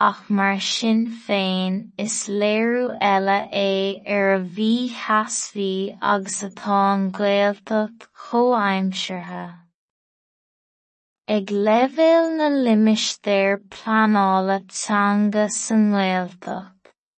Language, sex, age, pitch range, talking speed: English, female, 20-39, 195-225 Hz, 75 wpm